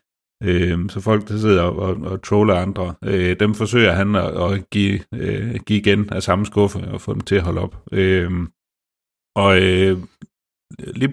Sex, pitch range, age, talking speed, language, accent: male, 90-110 Hz, 40-59, 135 wpm, Danish, native